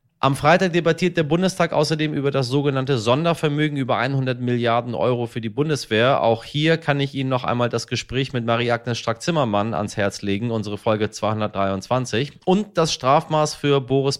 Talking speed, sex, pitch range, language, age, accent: 170 wpm, male, 115-145 Hz, German, 30-49, German